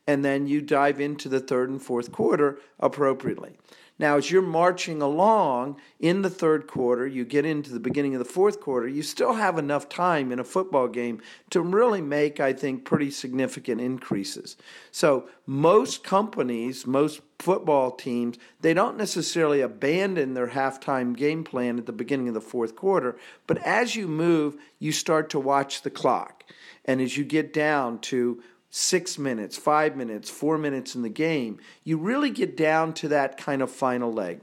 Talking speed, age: 180 wpm, 50-69